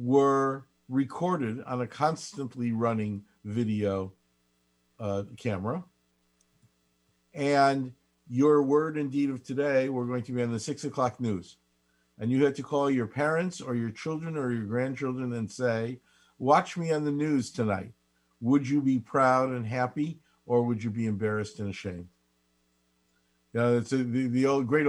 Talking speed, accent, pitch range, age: 160 wpm, American, 110-130 Hz, 50-69